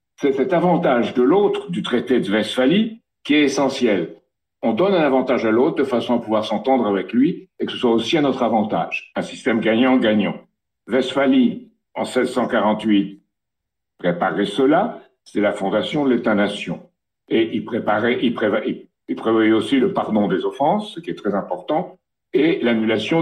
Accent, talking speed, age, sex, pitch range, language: French, 170 wpm, 60-79, male, 115-180 Hz, French